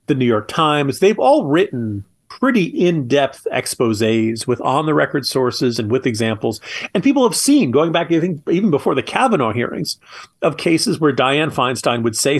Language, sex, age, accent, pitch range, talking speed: English, male, 40-59, American, 115-155 Hz, 165 wpm